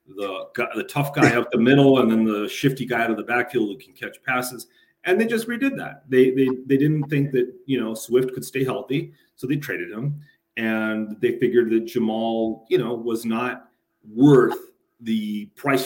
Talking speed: 200 wpm